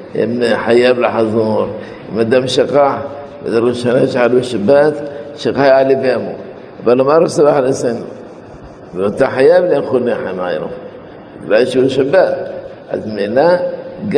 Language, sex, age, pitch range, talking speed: Hebrew, male, 50-69, 125-155 Hz, 95 wpm